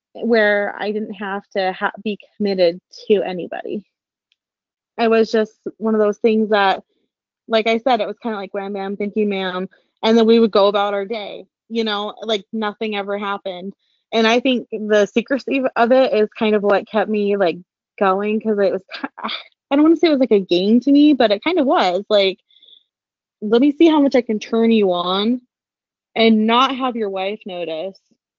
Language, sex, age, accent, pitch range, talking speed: English, female, 20-39, American, 200-235 Hz, 205 wpm